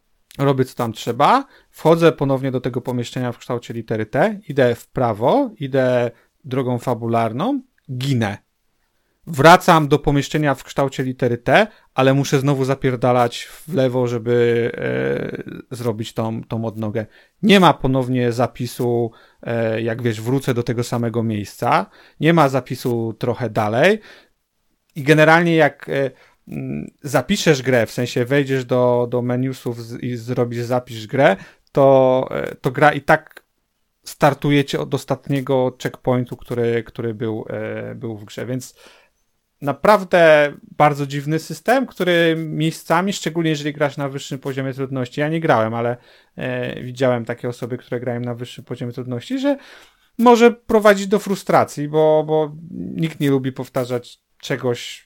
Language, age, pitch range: Polish, 40-59, 120-155 Hz